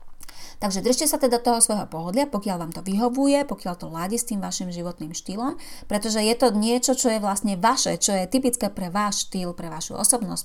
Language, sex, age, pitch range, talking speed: Slovak, female, 30-49, 175-225 Hz, 205 wpm